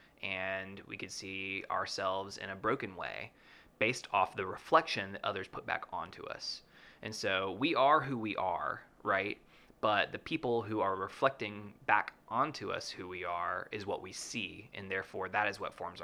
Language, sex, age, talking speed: English, male, 20-39, 185 wpm